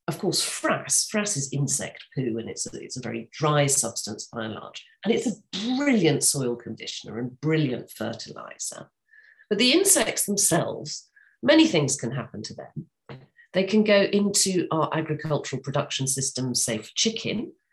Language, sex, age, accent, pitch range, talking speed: English, female, 40-59, British, 130-200 Hz, 160 wpm